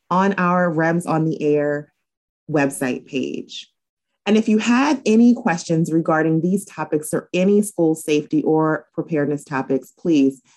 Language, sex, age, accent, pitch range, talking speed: English, female, 30-49, American, 140-185 Hz, 140 wpm